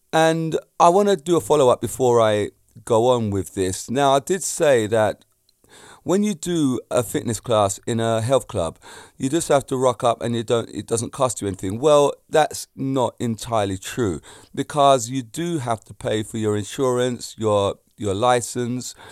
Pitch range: 110-140 Hz